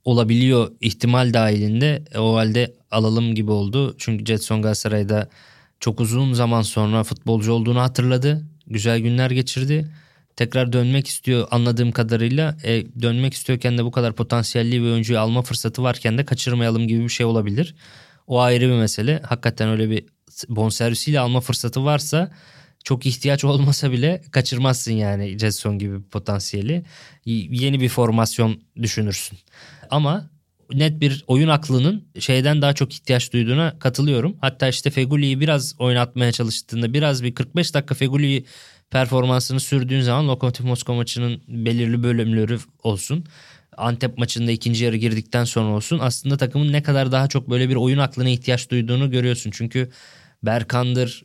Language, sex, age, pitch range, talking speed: Turkish, male, 20-39, 115-135 Hz, 145 wpm